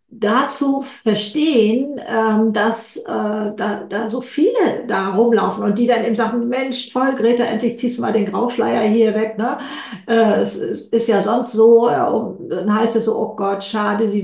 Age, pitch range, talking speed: 50-69, 205-240 Hz, 185 wpm